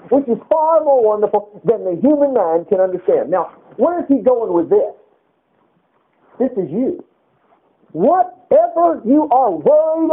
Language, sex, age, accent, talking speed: English, male, 50-69, American, 150 wpm